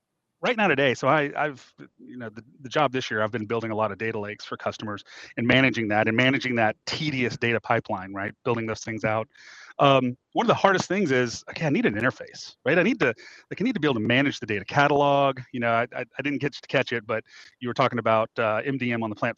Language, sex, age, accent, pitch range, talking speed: English, male, 30-49, American, 115-140 Hz, 260 wpm